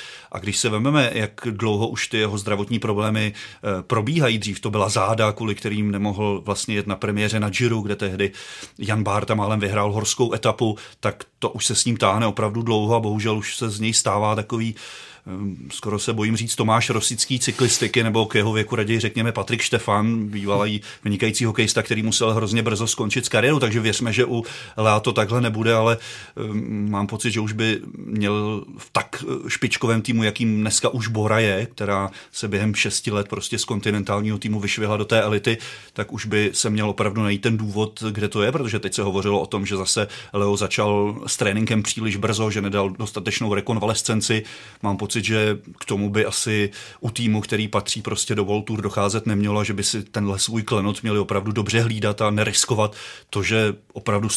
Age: 30-49